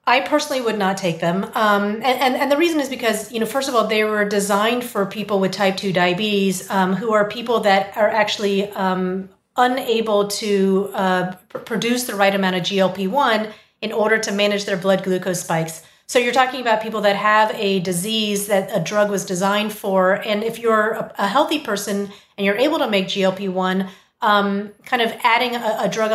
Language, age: English, 30-49